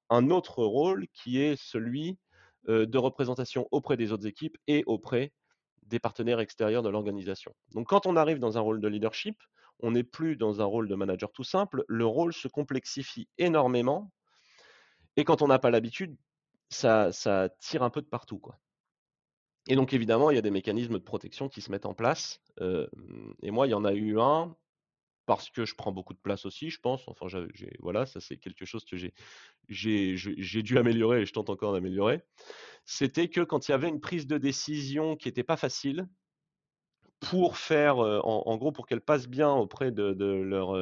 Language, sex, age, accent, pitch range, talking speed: French, male, 30-49, French, 105-145 Hz, 205 wpm